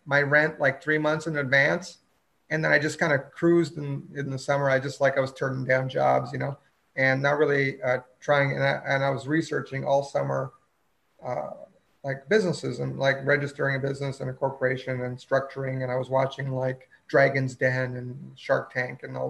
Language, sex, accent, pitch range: English, male, American, 130-150 Hz